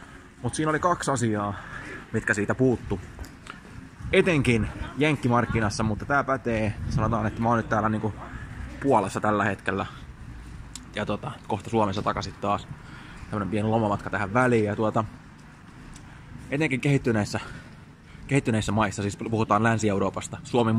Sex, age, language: male, 20-39, Finnish